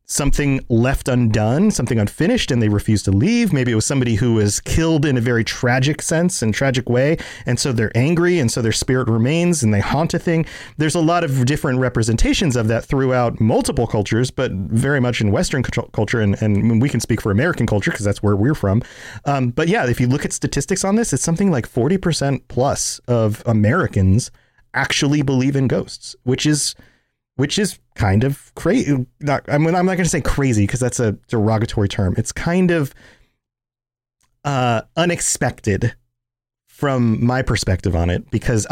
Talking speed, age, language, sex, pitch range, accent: 185 wpm, 30-49, English, male, 115-145 Hz, American